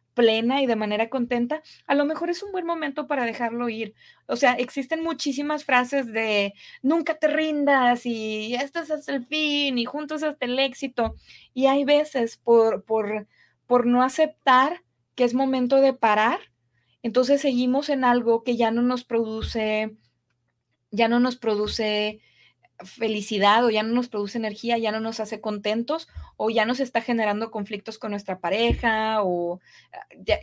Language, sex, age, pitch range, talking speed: English, female, 20-39, 215-275 Hz, 165 wpm